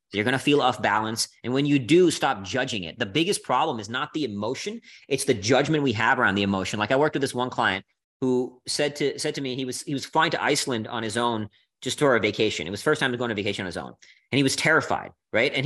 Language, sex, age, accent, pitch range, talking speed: English, male, 30-49, American, 120-155 Hz, 280 wpm